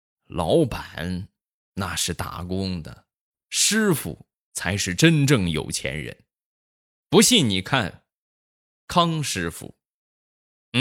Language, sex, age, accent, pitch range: Chinese, male, 20-39, native, 85-120 Hz